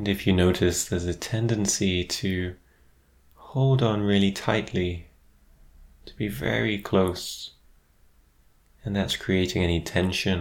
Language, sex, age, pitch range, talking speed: English, male, 20-39, 70-95 Hz, 120 wpm